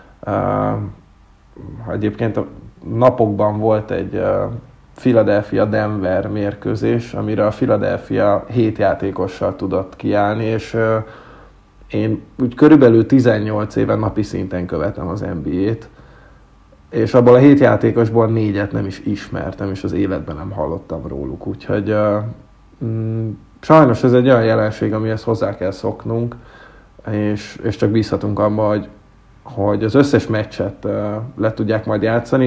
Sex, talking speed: male, 120 wpm